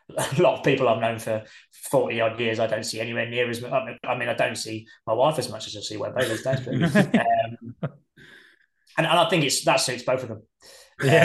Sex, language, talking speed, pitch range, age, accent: male, English, 225 wpm, 105-125 Hz, 20-39, British